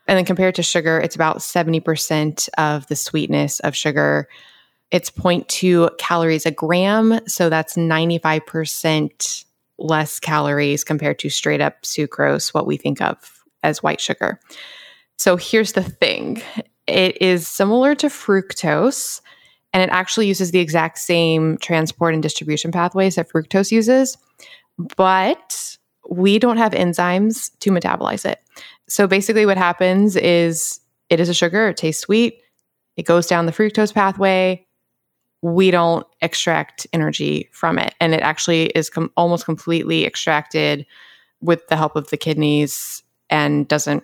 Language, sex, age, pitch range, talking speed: English, female, 20-39, 155-195 Hz, 145 wpm